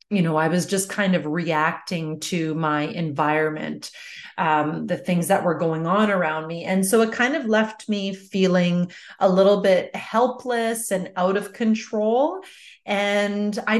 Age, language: 30-49, English